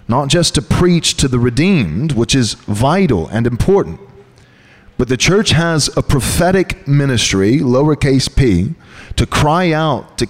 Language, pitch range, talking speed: English, 135-200 Hz, 145 wpm